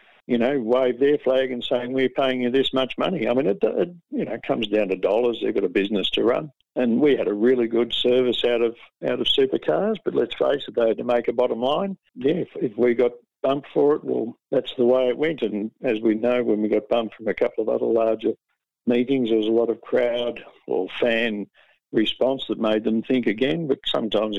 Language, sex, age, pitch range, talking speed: English, male, 60-79, 110-135 Hz, 240 wpm